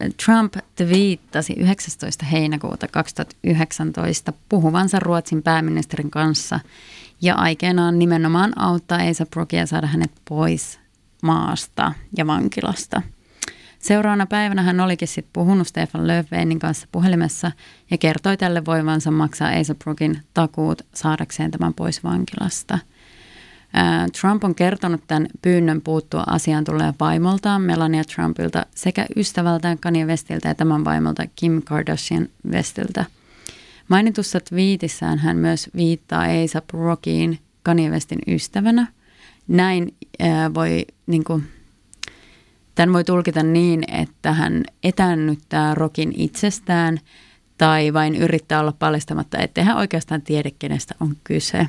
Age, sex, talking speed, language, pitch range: 30-49, female, 110 wpm, Finnish, 150-180 Hz